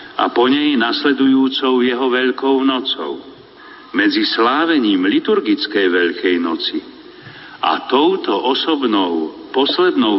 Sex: male